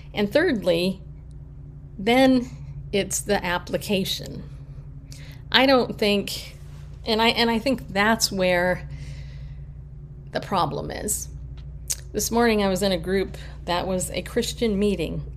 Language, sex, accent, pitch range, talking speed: English, female, American, 140-205 Hz, 120 wpm